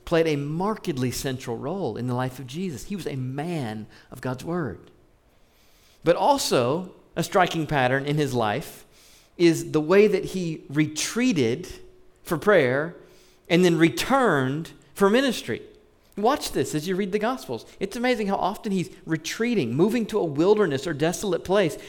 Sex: male